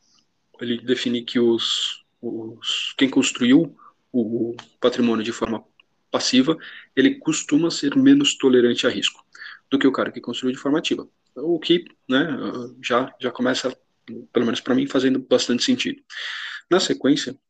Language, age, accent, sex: Portuguese, 20-39, Brazilian, male